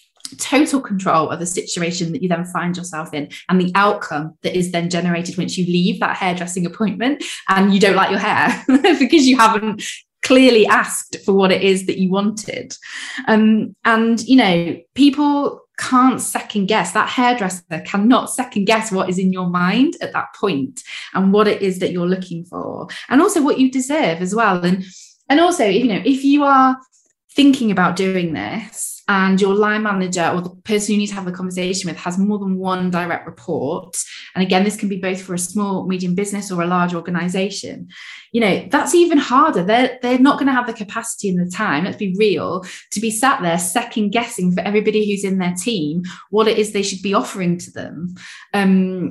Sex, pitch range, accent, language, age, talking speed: female, 180-240 Hz, British, English, 20-39, 205 wpm